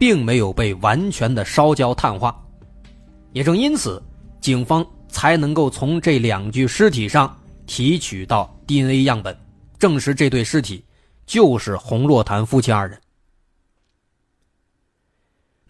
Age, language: 20-39, Chinese